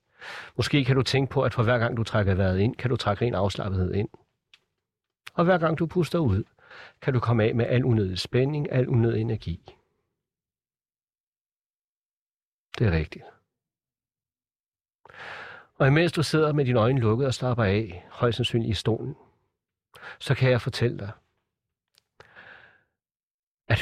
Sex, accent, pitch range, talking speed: male, native, 115-140 Hz, 150 wpm